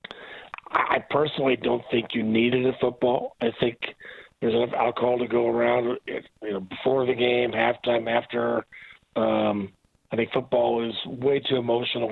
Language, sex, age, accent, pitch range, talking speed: English, male, 50-69, American, 115-130 Hz, 155 wpm